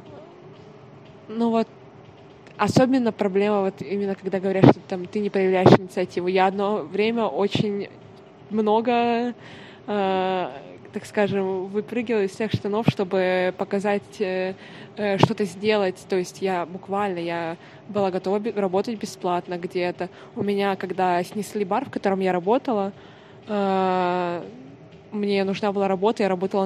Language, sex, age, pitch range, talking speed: Russian, female, 20-39, 185-205 Hz, 130 wpm